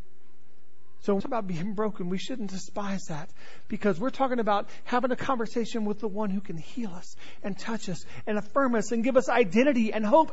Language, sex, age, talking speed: English, male, 40-59, 205 wpm